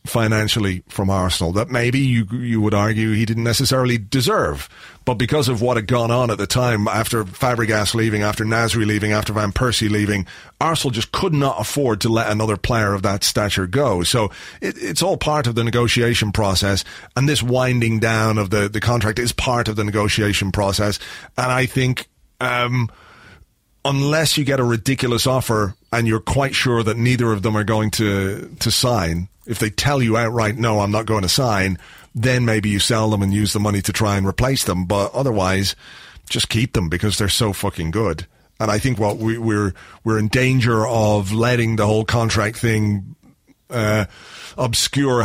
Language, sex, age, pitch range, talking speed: English, male, 30-49, 105-125 Hz, 190 wpm